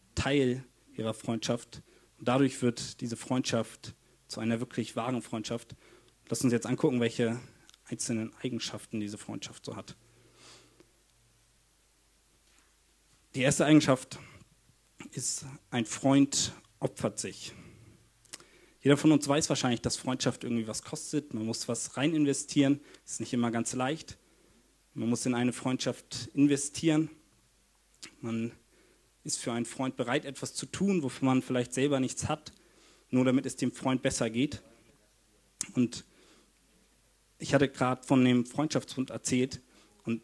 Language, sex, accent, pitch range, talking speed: German, male, German, 115-135 Hz, 135 wpm